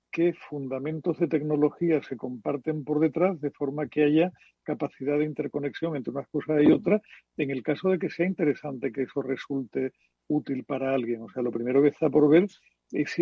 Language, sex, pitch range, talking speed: Spanish, male, 140-160 Hz, 195 wpm